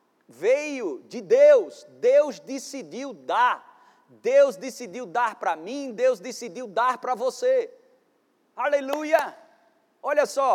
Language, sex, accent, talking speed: Portuguese, male, Brazilian, 110 wpm